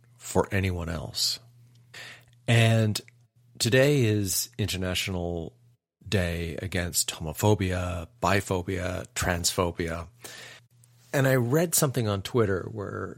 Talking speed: 85 wpm